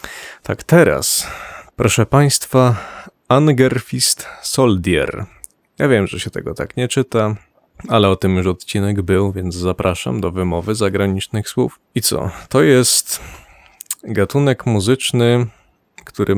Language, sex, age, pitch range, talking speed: Polish, male, 30-49, 100-120 Hz, 120 wpm